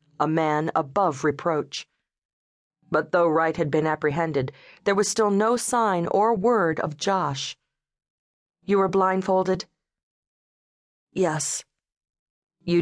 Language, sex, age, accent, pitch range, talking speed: English, female, 40-59, American, 140-185 Hz, 110 wpm